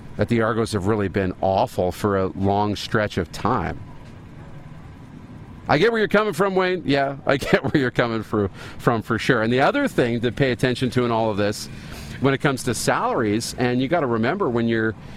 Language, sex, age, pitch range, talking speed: English, male, 40-59, 105-130 Hz, 210 wpm